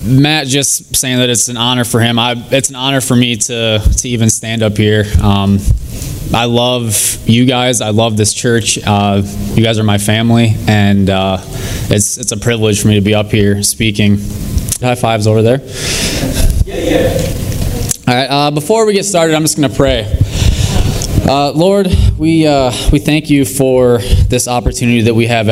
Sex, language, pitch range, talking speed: male, English, 105-125 Hz, 190 wpm